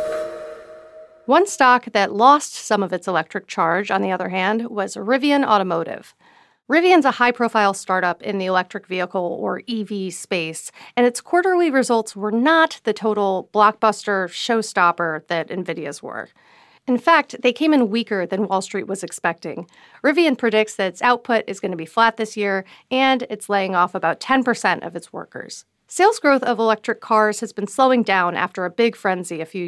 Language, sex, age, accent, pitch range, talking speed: English, female, 40-59, American, 190-250 Hz, 175 wpm